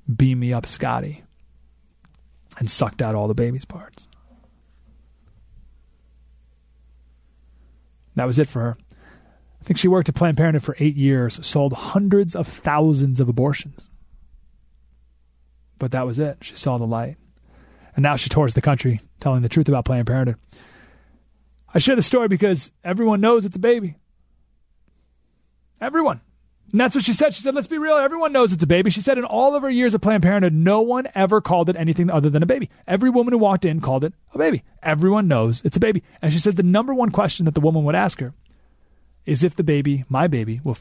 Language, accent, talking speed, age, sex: English, American, 195 wpm, 30-49, male